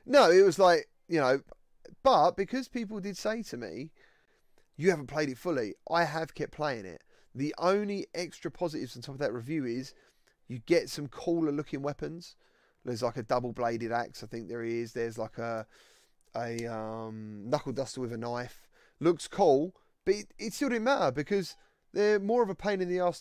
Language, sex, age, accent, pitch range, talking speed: English, male, 30-49, British, 120-175 Hz, 190 wpm